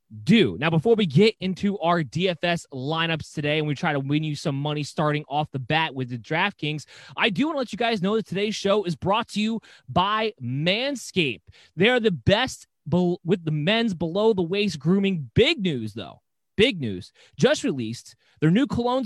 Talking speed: 200 wpm